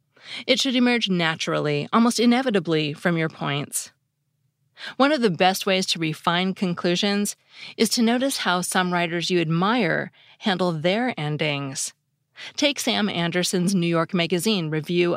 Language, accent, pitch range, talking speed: English, American, 160-210 Hz, 140 wpm